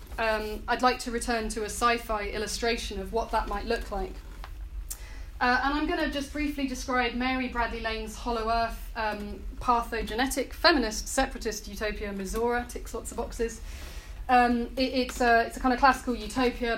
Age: 30-49